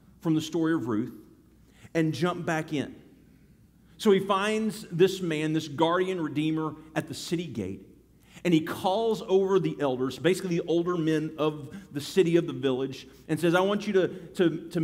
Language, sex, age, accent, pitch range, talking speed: English, male, 40-59, American, 145-185 Hz, 180 wpm